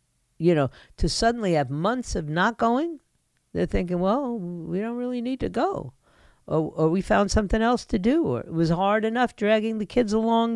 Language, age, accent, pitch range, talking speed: English, 50-69, American, 150-195 Hz, 200 wpm